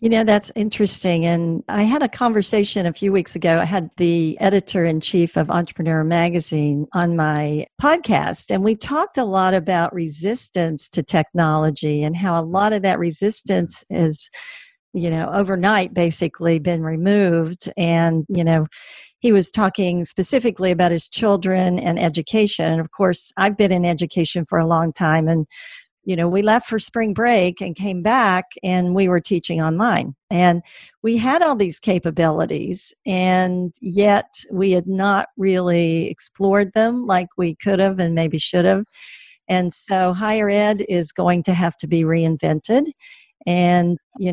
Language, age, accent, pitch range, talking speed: English, 50-69, American, 170-205 Hz, 160 wpm